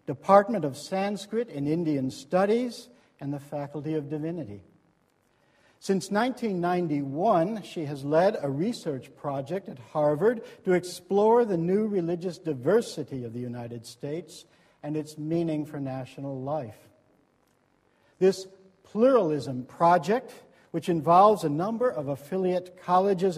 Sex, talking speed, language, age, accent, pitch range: male, 120 wpm, English, 60-79, American, 145-205 Hz